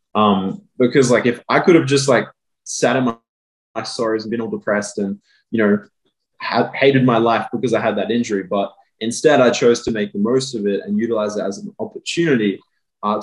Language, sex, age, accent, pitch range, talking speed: English, male, 20-39, Australian, 105-130 Hz, 210 wpm